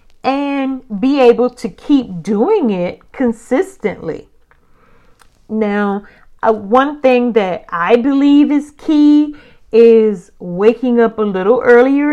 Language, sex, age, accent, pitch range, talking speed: English, female, 40-59, American, 210-255 Hz, 115 wpm